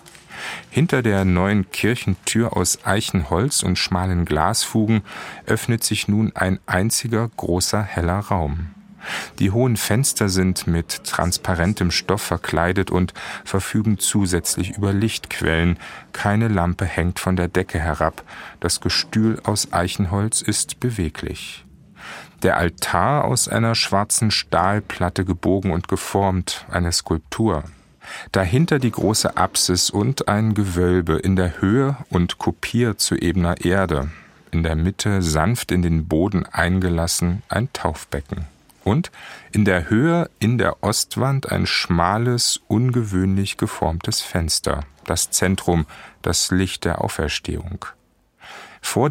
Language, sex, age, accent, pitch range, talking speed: German, male, 40-59, German, 90-110 Hz, 120 wpm